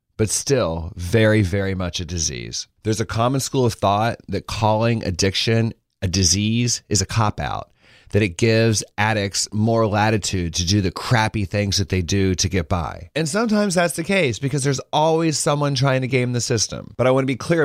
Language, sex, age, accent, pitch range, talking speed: English, male, 30-49, American, 100-125 Hz, 195 wpm